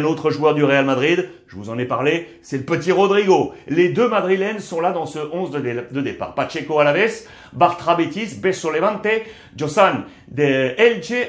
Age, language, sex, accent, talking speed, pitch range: 60-79, French, male, French, 180 wpm, 130-180 Hz